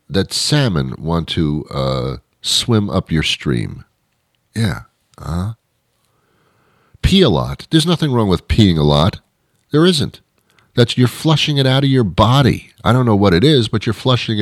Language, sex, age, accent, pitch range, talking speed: English, male, 50-69, American, 75-115 Hz, 165 wpm